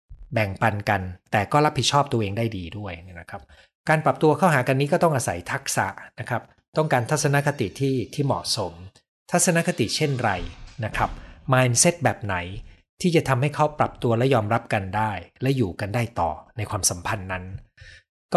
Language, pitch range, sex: Thai, 100-130 Hz, male